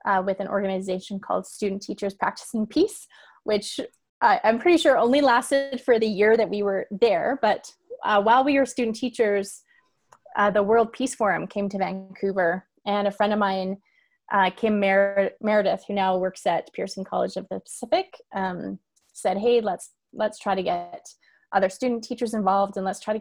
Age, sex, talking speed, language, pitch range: 20-39, female, 185 wpm, English, 200-255 Hz